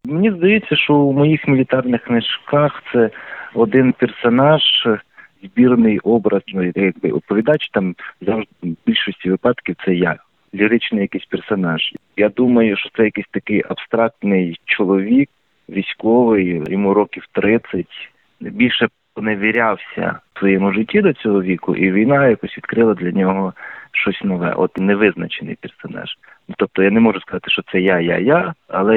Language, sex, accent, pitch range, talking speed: Ukrainian, male, native, 95-120 Hz, 140 wpm